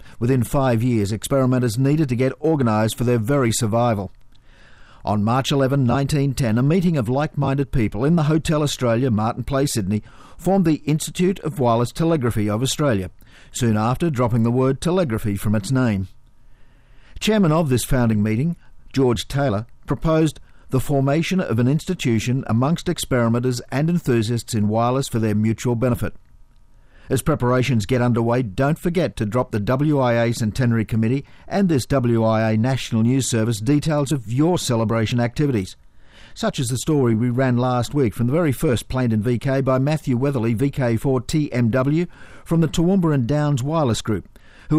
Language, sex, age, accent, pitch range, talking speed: English, male, 50-69, Australian, 115-145 Hz, 160 wpm